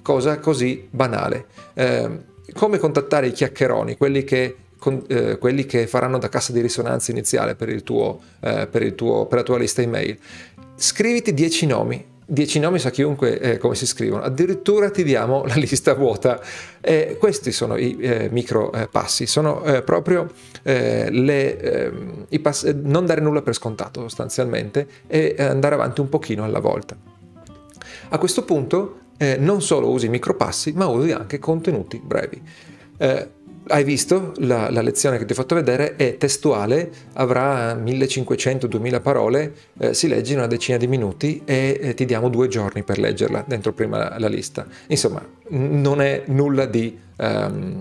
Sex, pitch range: male, 120-150 Hz